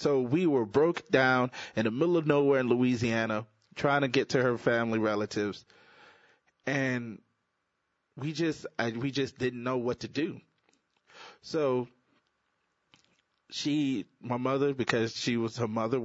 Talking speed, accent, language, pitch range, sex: 140 wpm, American, English, 115-145 Hz, male